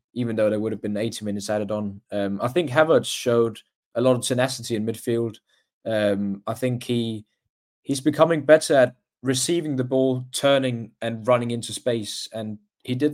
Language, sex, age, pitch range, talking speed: English, male, 20-39, 105-125 Hz, 185 wpm